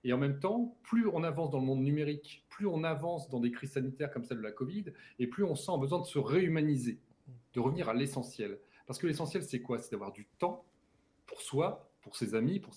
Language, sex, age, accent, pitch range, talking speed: French, male, 30-49, French, 125-175 Hz, 235 wpm